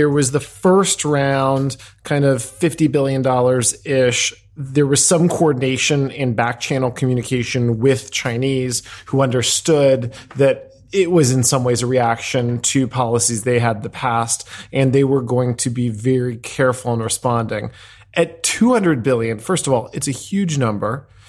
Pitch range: 120-145 Hz